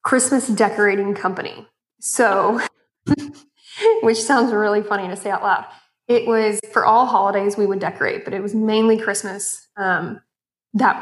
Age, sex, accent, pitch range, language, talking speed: 20-39, female, American, 195-220 Hz, English, 145 wpm